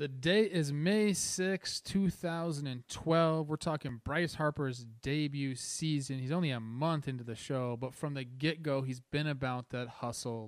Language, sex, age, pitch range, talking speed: English, male, 30-49, 125-155 Hz, 160 wpm